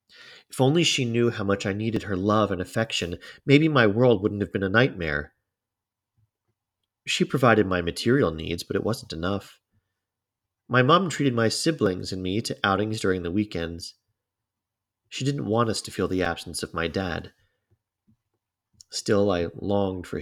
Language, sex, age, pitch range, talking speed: English, male, 40-59, 95-120 Hz, 165 wpm